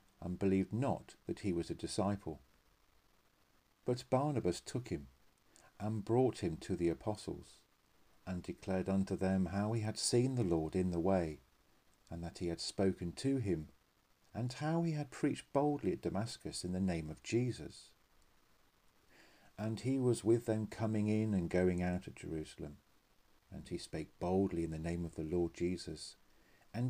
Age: 50-69